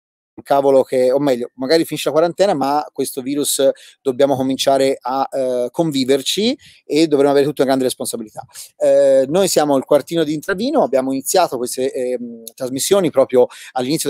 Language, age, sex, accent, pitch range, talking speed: Italian, 30-49, male, native, 130-155 Hz, 160 wpm